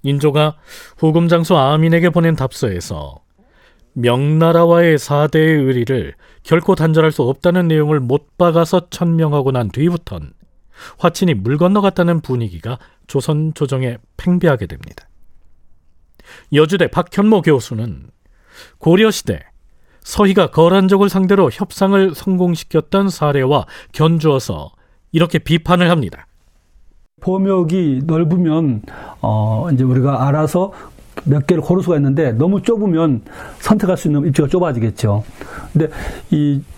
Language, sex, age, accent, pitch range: Korean, male, 40-59, native, 130-175 Hz